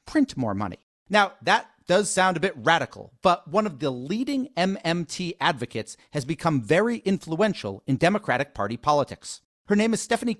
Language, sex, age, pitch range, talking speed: English, male, 40-59, 140-200 Hz, 165 wpm